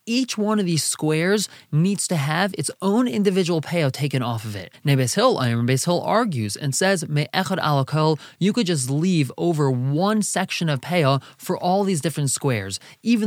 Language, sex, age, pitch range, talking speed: English, male, 20-39, 135-185 Hz, 180 wpm